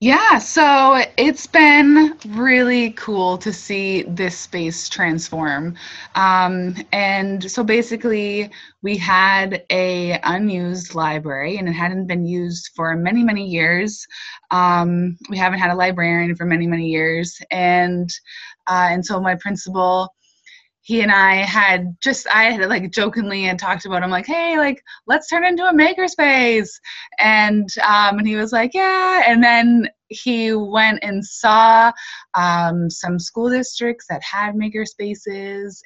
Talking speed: 145 wpm